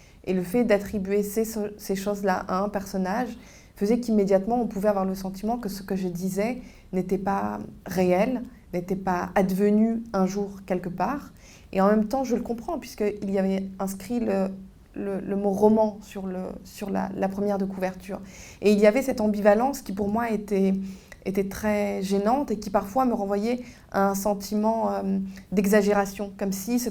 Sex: female